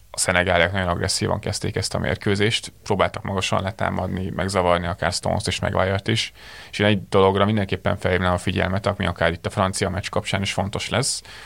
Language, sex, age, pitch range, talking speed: Hungarian, male, 30-49, 90-105 Hz, 190 wpm